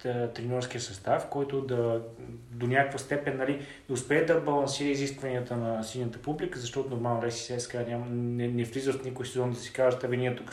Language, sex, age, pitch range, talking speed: Bulgarian, male, 20-39, 120-140 Hz, 175 wpm